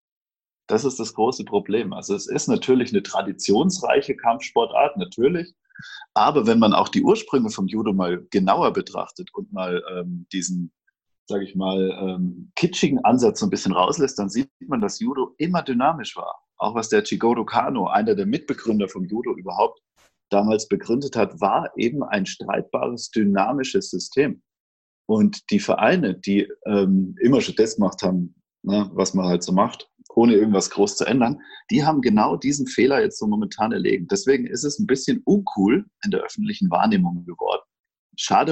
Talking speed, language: 165 wpm, German